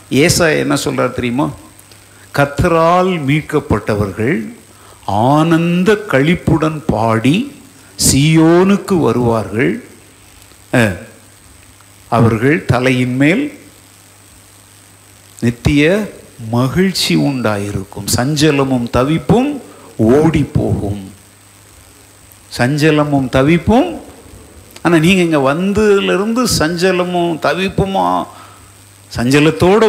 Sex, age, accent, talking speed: male, 50-69, native, 60 wpm